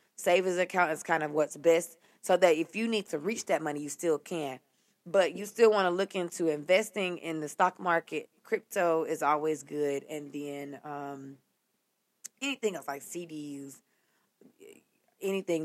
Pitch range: 150-180 Hz